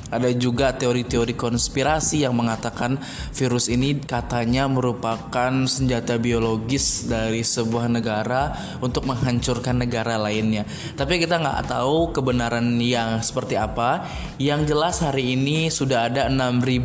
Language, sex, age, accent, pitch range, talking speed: Indonesian, male, 20-39, native, 120-145 Hz, 120 wpm